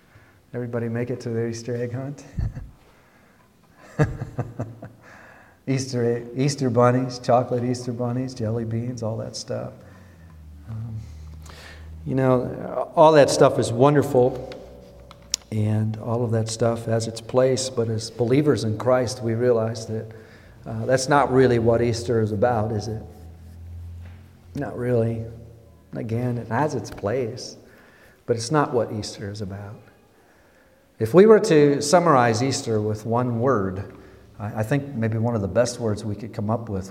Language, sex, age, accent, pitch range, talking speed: English, male, 50-69, American, 110-135 Hz, 145 wpm